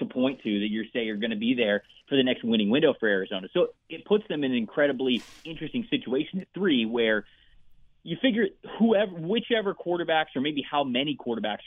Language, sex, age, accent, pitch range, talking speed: English, male, 30-49, American, 115-180 Hz, 205 wpm